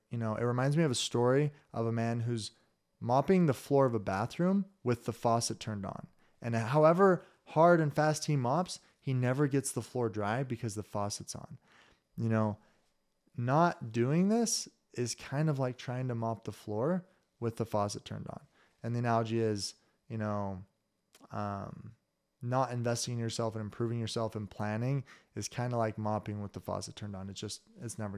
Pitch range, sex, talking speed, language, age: 110-145 Hz, male, 190 wpm, English, 20-39